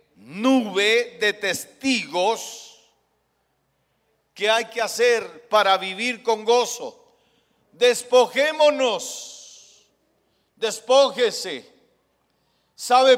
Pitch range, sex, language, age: 185-240 Hz, male, Spanish, 50-69